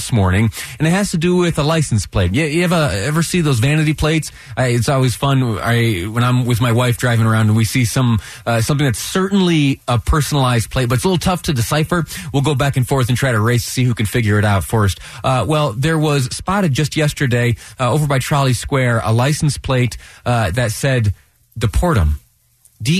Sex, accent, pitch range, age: male, American, 110-140 Hz, 30-49